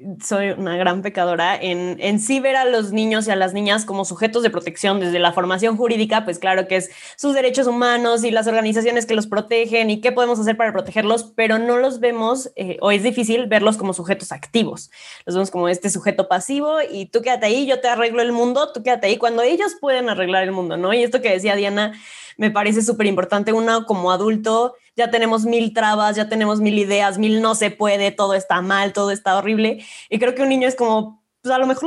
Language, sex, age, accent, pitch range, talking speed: Spanish, female, 20-39, Mexican, 200-240 Hz, 225 wpm